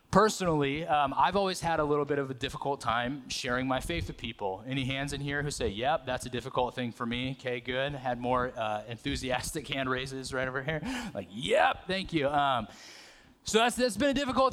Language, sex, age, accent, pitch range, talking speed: English, male, 20-39, American, 130-165 Hz, 215 wpm